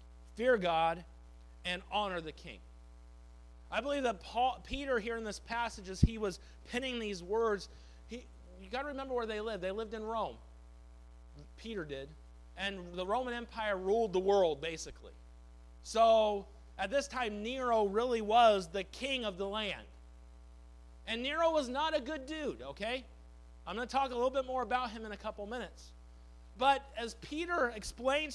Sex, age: male, 40-59